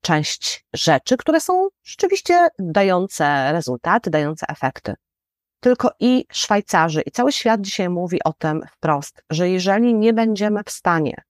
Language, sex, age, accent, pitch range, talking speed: Polish, female, 30-49, native, 165-220 Hz, 140 wpm